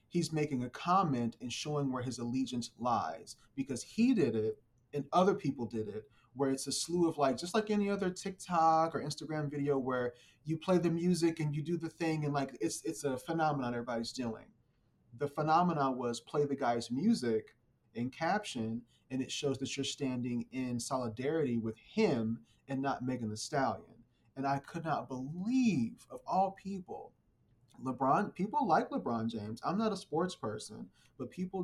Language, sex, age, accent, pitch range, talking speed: English, male, 30-49, American, 120-165 Hz, 180 wpm